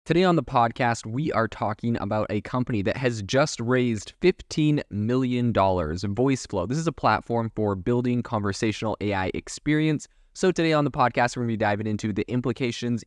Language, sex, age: English, male, 20-39